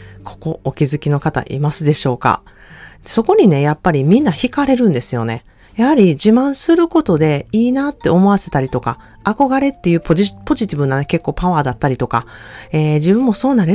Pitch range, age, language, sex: 140-215 Hz, 30-49, Japanese, female